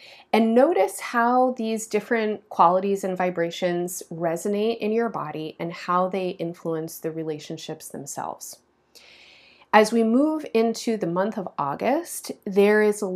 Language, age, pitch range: English, 30-49, 170-215 Hz